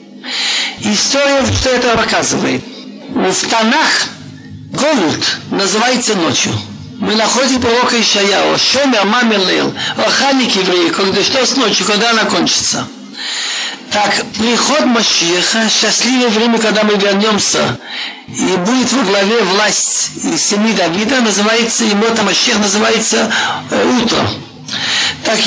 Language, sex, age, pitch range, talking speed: Russian, male, 60-79, 205-245 Hz, 110 wpm